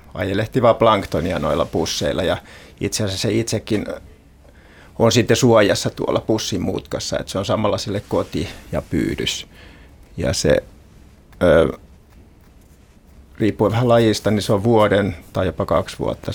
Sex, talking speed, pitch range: male, 130 wpm, 80-110 Hz